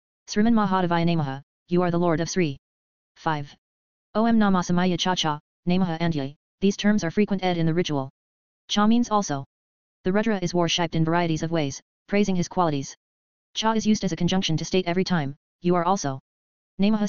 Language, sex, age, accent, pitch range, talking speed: Tamil, female, 20-39, American, 150-190 Hz, 190 wpm